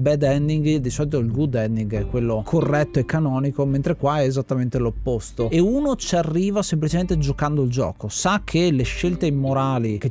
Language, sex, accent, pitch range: Italian, male, native, 125-150 Hz